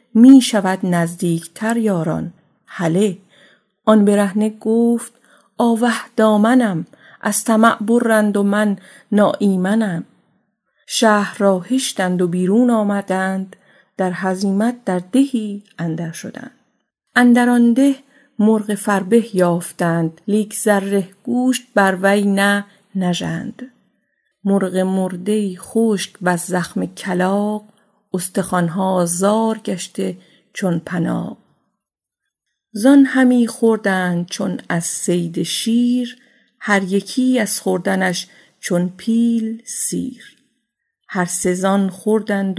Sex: female